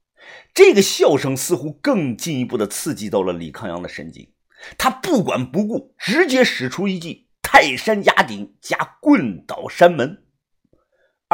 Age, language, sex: 50-69, Chinese, male